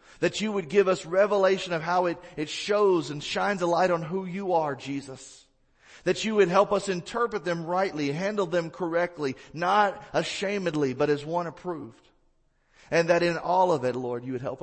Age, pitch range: 40-59, 130-185 Hz